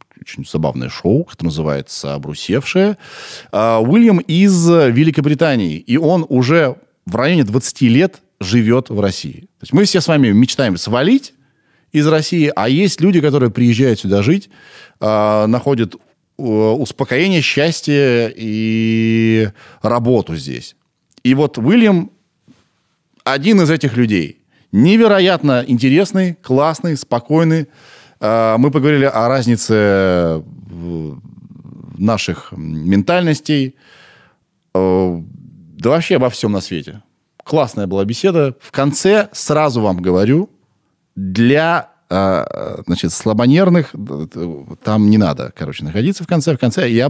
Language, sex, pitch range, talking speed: Russian, male, 105-155 Hz, 105 wpm